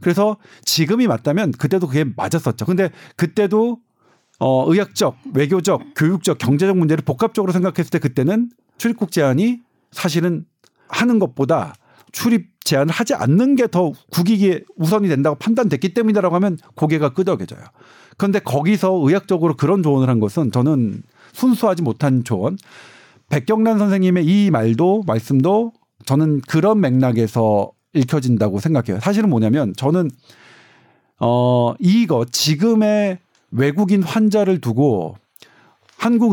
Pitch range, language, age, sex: 135-200 Hz, Korean, 50-69, male